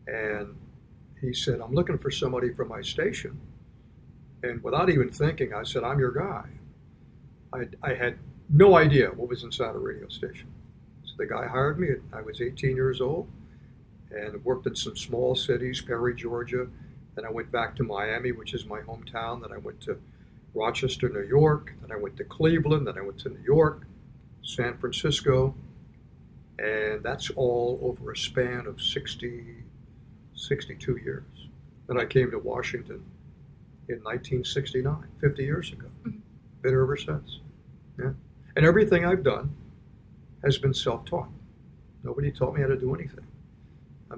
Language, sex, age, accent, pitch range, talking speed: English, male, 60-79, American, 120-140 Hz, 160 wpm